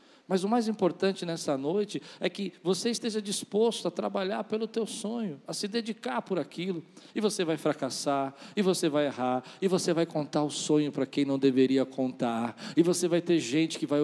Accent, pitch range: Brazilian, 155-200 Hz